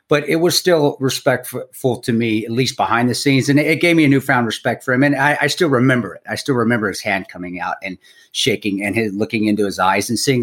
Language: English